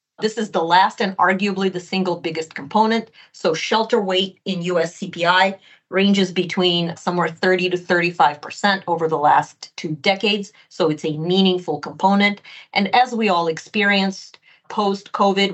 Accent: American